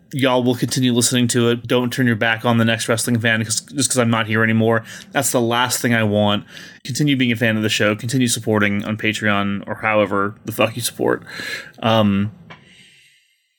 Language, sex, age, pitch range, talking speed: English, male, 20-39, 110-130 Hz, 200 wpm